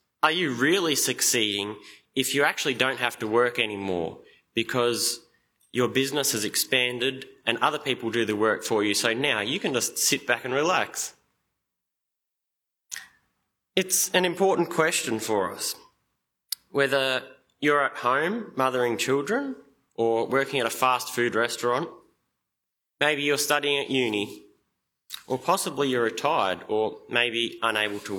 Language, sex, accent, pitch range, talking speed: English, male, Australian, 115-160 Hz, 140 wpm